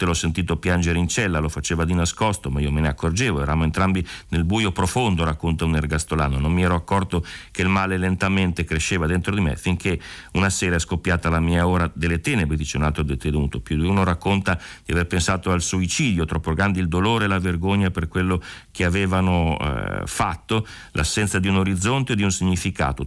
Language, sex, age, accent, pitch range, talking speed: Italian, male, 40-59, native, 80-95 Hz, 205 wpm